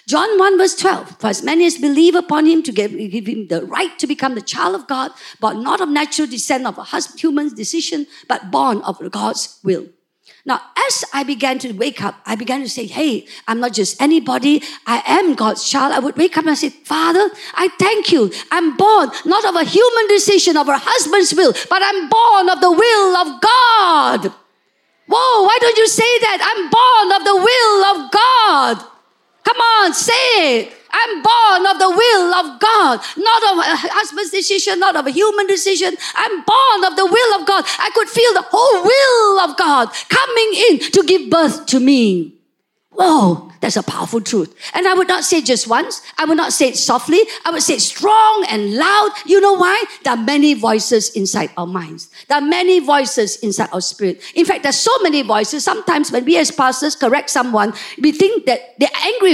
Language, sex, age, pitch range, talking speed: English, female, 50-69, 270-400 Hz, 210 wpm